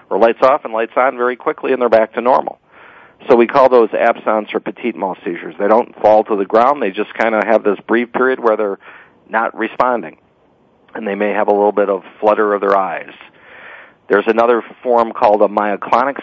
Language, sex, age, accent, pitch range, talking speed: English, male, 40-59, American, 105-120 Hz, 215 wpm